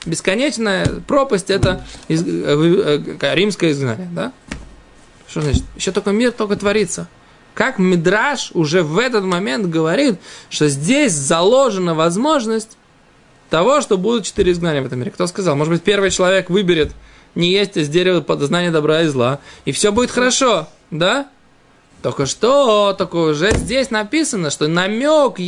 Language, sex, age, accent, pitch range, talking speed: Russian, male, 20-39, native, 165-240 Hz, 155 wpm